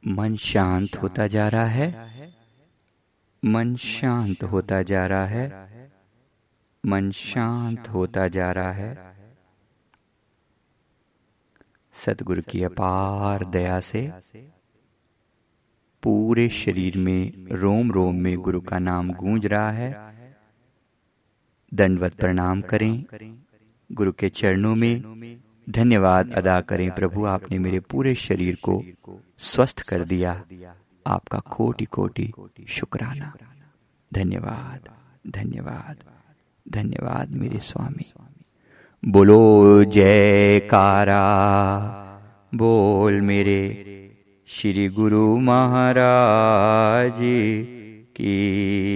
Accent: native